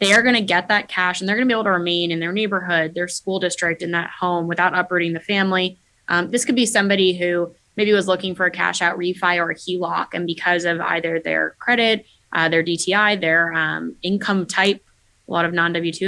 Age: 20-39